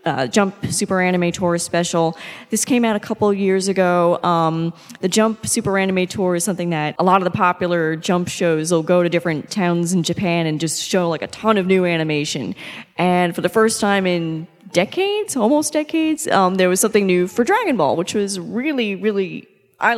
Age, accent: 20-39, American